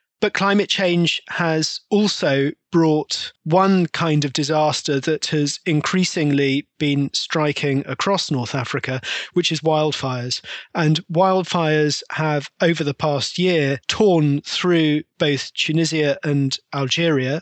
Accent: British